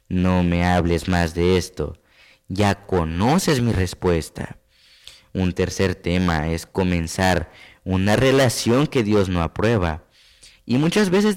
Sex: male